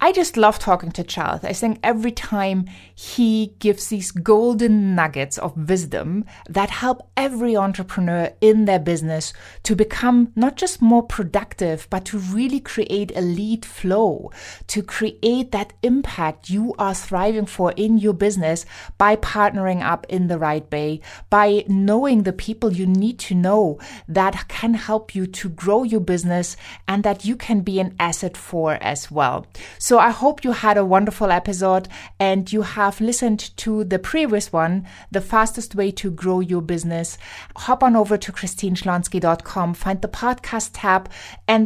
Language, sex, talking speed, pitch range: English, female, 165 wpm, 185-220 Hz